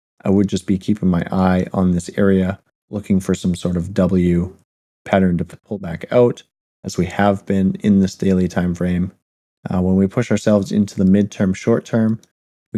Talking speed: 195 wpm